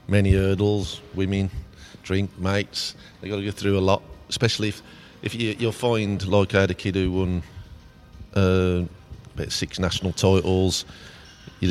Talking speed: 165 wpm